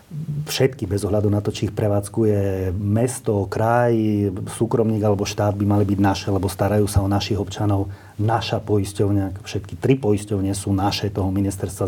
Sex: male